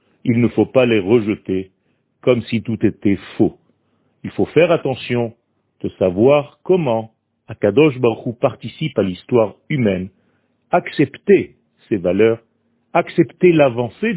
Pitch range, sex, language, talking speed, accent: 105-140 Hz, male, French, 125 wpm, French